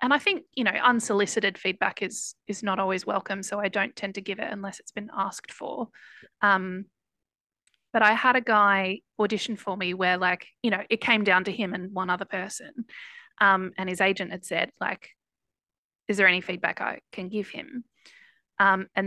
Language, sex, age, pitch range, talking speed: English, female, 20-39, 180-215 Hz, 200 wpm